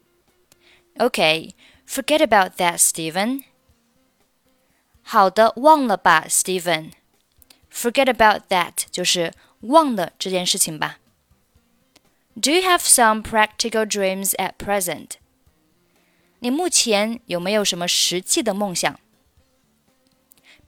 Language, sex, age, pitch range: Chinese, female, 20-39, 190-260 Hz